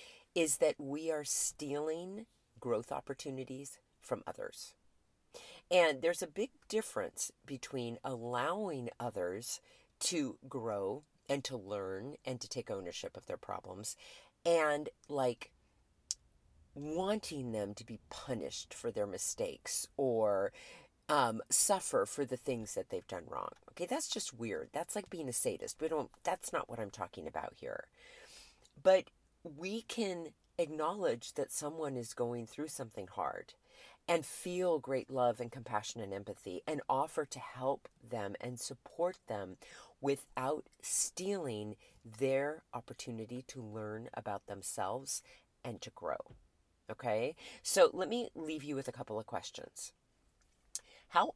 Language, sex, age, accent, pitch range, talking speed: English, female, 40-59, American, 120-185 Hz, 135 wpm